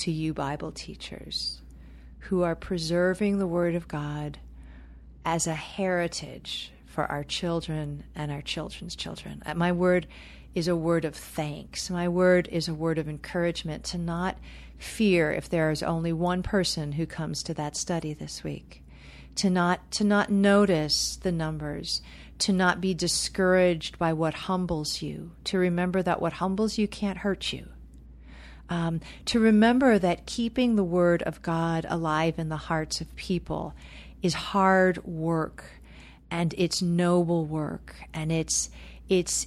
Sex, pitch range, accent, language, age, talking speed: female, 150-180 Hz, American, English, 40-59, 150 wpm